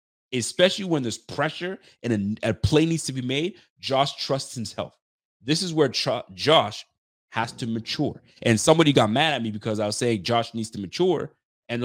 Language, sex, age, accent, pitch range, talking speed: English, male, 30-49, American, 115-165 Hz, 190 wpm